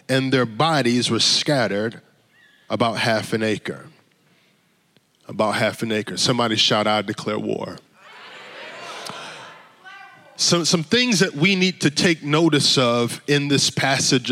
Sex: male